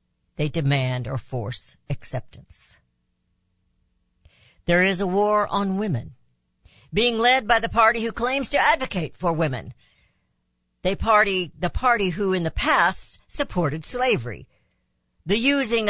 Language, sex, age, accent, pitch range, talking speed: English, female, 60-79, American, 140-210 Hz, 130 wpm